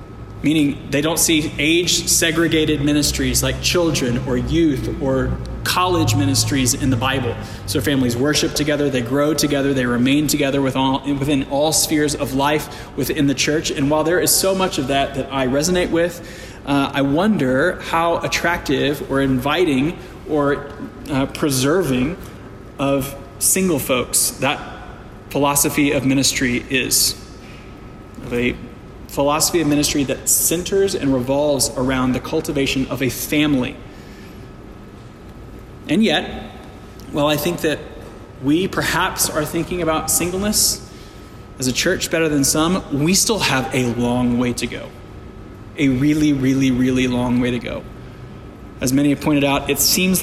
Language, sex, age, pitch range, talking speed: English, male, 20-39, 125-155 Hz, 140 wpm